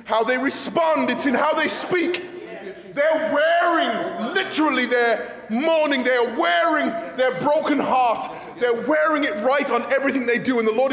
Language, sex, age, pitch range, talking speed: English, male, 20-39, 200-295 Hz, 160 wpm